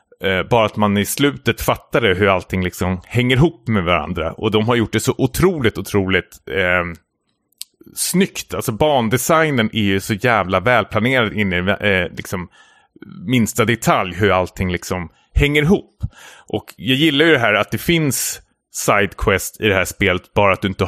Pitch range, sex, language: 95-120 Hz, male, Swedish